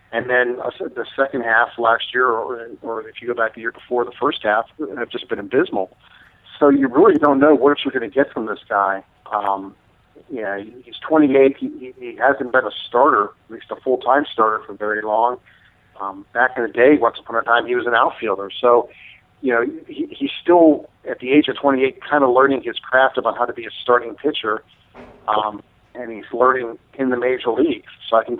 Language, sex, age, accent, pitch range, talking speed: English, male, 40-59, American, 110-135 Hz, 215 wpm